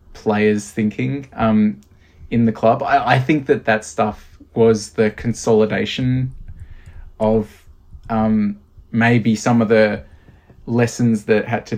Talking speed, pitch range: 125 wpm, 100-125 Hz